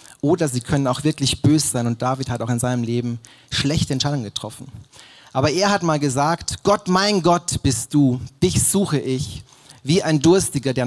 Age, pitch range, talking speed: 30-49, 125-155 Hz, 190 wpm